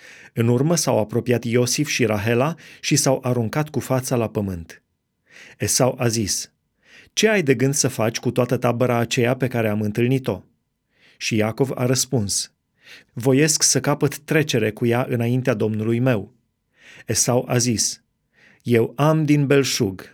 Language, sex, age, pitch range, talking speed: Romanian, male, 30-49, 120-140 Hz, 150 wpm